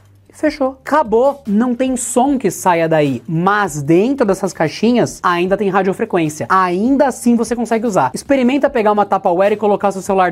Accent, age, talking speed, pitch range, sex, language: Brazilian, 20-39, 165 wpm, 165-235 Hz, male, Portuguese